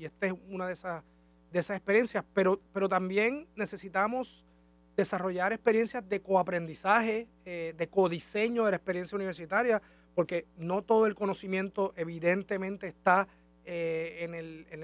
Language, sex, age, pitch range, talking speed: Spanish, male, 30-49, 160-195 Hz, 130 wpm